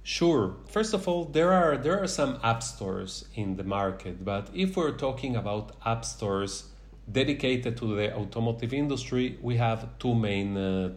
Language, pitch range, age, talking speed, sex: English, 105-135 Hz, 30-49, 170 wpm, male